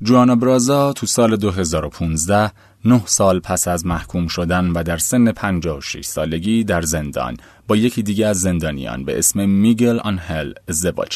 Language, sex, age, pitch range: Persian, male, 30-49, 85-110 Hz